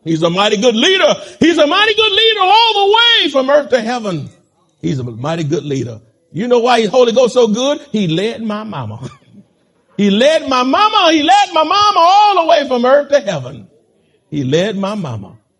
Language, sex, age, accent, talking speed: English, male, 50-69, American, 205 wpm